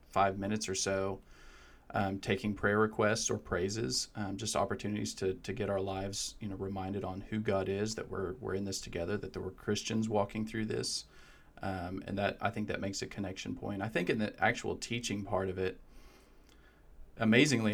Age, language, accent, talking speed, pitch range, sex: 40-59, English, American, 195 wpm, 95-105 Hz, male